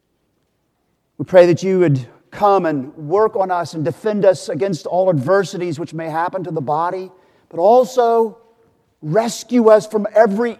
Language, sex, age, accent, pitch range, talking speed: English, male, 40-59, American, 130-180 Hz, 160 wpm